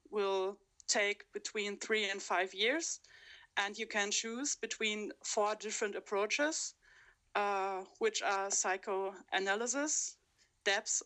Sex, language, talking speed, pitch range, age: female, English, 110 wpm, 190-235 Hz, 30-49